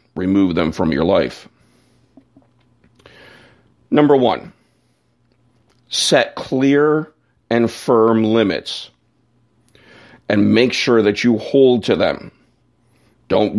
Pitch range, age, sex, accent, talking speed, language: 110-130 Hz, 50-69, male, American, 95 wpm, English